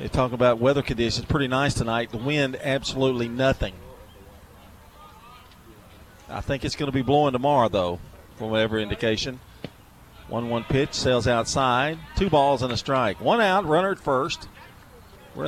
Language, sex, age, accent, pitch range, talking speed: English, male, 40-59, American, 105-140 Hz, 150 wpm